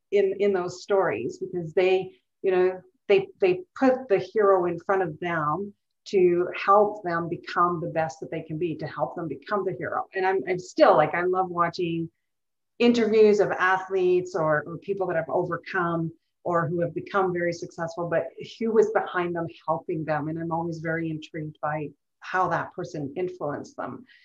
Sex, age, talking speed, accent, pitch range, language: female, 40-59, 185 wpm, American, 165-195 Hz, English